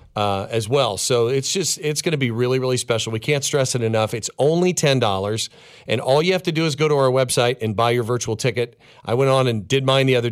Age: 40-59